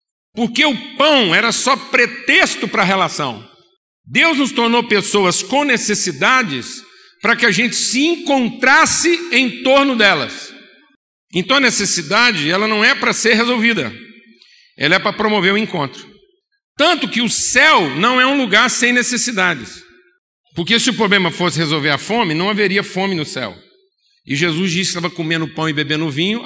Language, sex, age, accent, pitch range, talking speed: Portuguese, male, 50-69, Brazilian, 165-235 Hz, 165 wpm